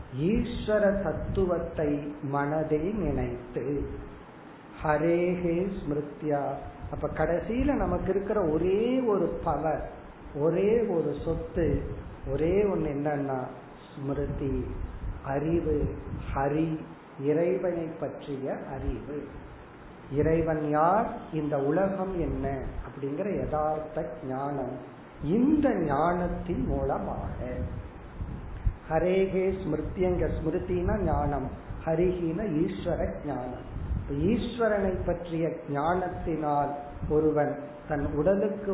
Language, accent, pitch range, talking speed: Tamil, native, 145-190 Hz, 60 wpm